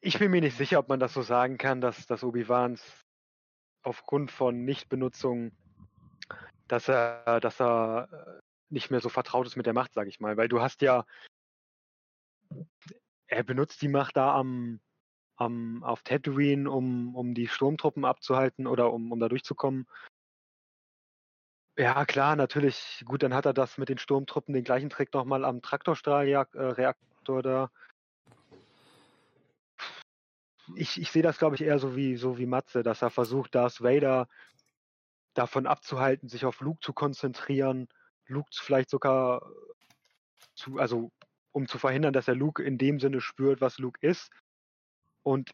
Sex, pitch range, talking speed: male, 120-140 Hz, 155 wpm